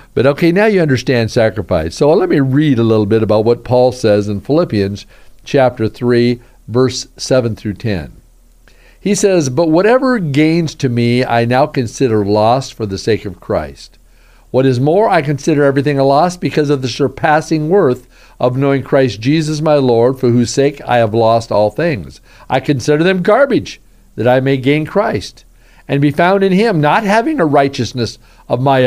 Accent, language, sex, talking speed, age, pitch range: American, English, male, 185 wpm, 50-69, 120-155 Hz